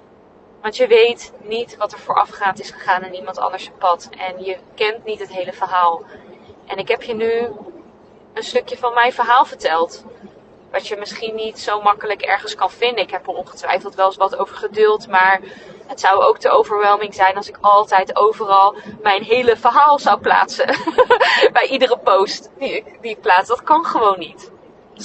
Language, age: Dutch, 20-39